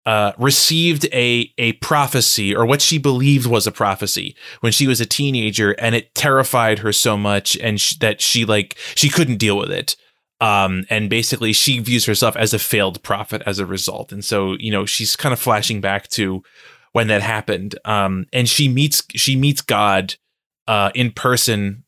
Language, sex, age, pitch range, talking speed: English, male, 20-39, 105-135 Hz, 190 wpm